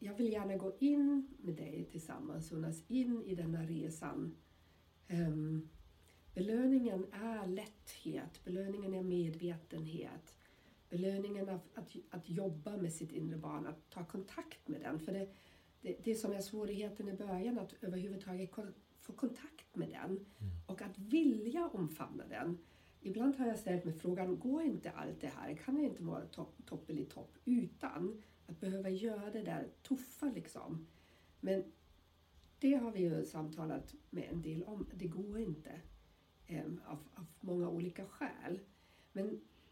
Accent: native